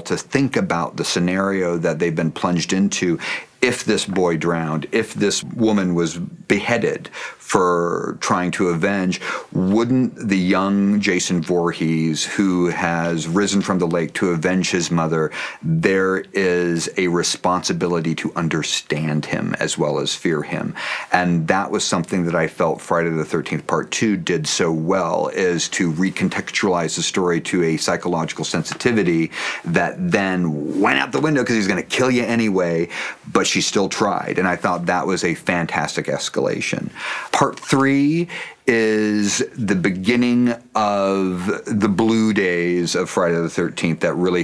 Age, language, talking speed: 40-59, English, 155 wpm